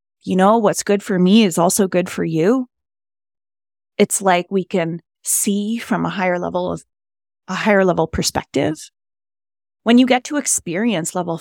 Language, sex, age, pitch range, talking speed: English, female, 30-49, 170-220 Hz, 165 wpm